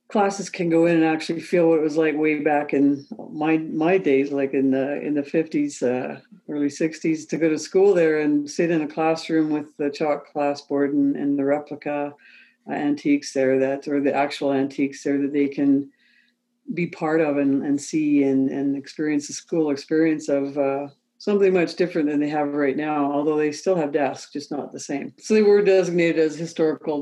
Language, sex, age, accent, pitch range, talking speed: English, female, 60-79, American, 145-175 Hz, 210 wpm